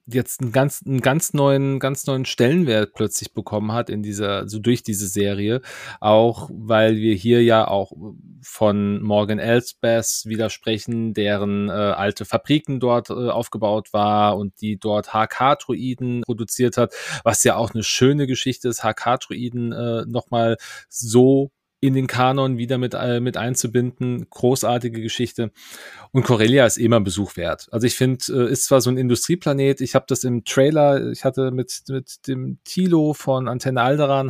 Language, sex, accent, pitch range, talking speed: German, male, German, 110-130 Hz, 165 wpm